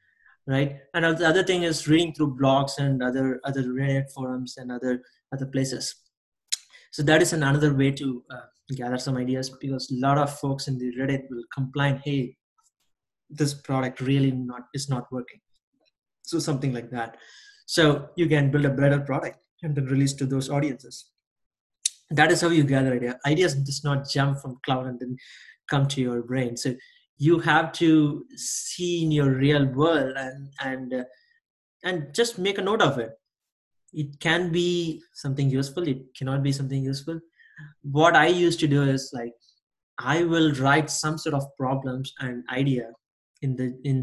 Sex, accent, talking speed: male, Indian, 175 wpm